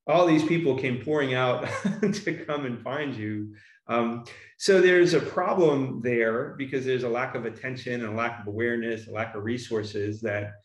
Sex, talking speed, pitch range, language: male, 185 wpm, 110-140 Hz, English